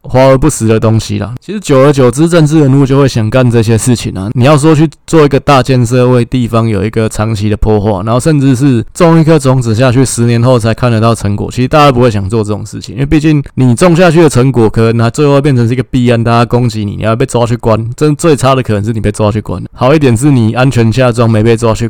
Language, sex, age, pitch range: Chinese, male, 20-39, 110-140 Hz